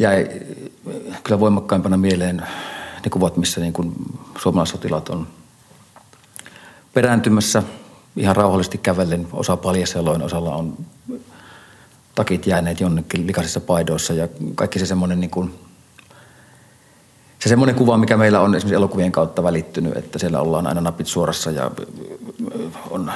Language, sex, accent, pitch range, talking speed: Finnish, male, native, 90-100 Hz, 125 wpm